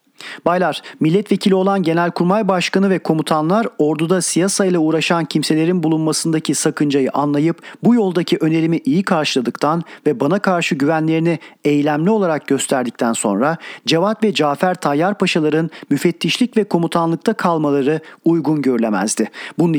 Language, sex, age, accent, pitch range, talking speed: Turkish, male, 40-59, native, 145-180 Hz, 120 wpm